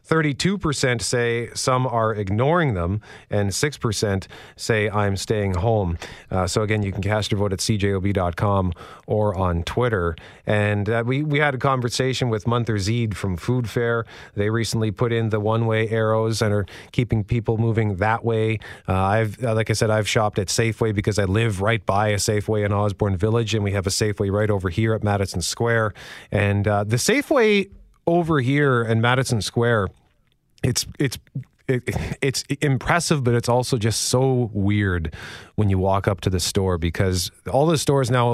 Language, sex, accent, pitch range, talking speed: English, male, American, 100-125 Hz, 180 wpm